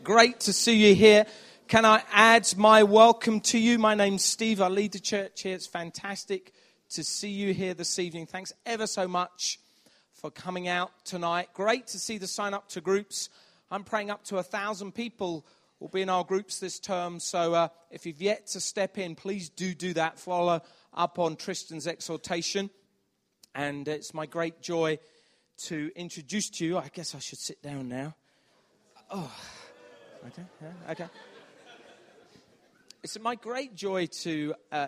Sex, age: male, 30-49